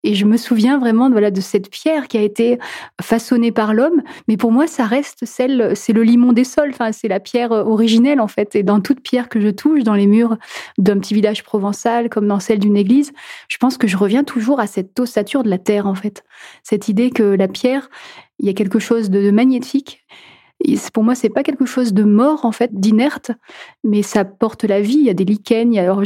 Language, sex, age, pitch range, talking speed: French, female, 30-49, 205-250 Hz, 240 wpm